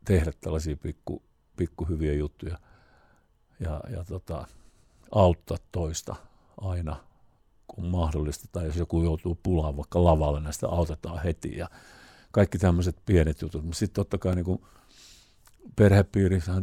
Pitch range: 80-100 Hz